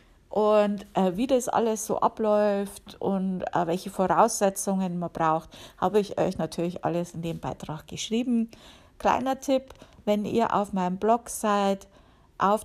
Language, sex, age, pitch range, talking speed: German, female, 50-69, 160-210 Hz, 145 wpm